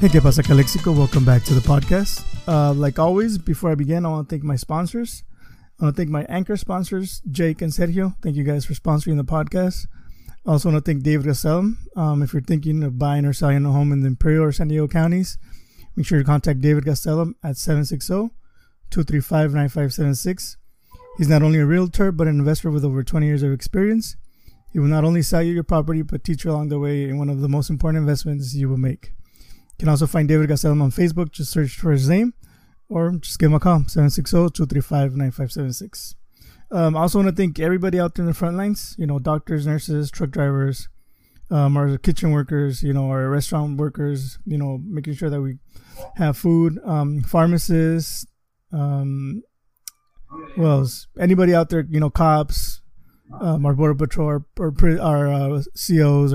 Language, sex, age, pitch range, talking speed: English, male, 20-39, 145-170 Hz, 195 wpm